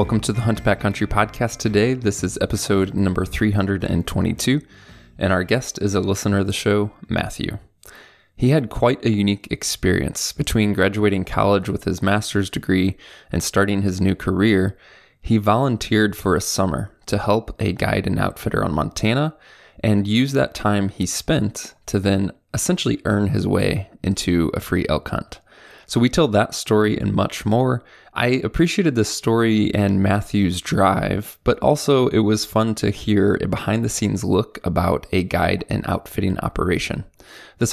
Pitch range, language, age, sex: 95-115 Hz, English, 20-39, male